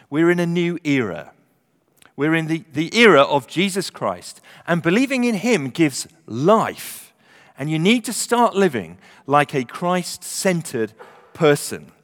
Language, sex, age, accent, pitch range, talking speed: English, male, 40-59, British, 130-190 Hz, 145 wpm